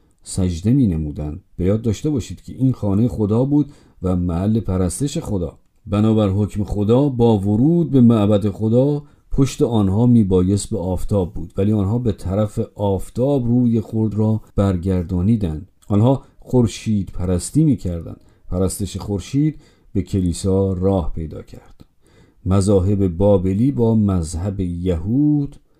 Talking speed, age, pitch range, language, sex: 130 wpm, 50-69, 95-125 Hz, Persian, male